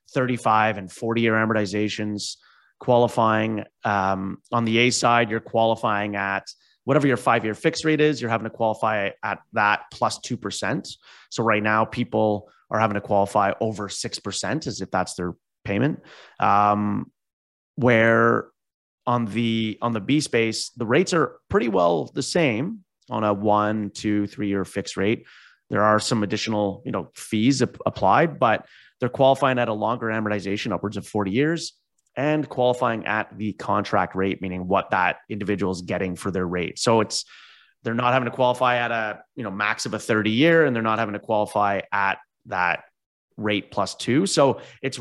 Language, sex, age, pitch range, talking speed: English, male, 30-49, 100-120 Hz, 175 wpm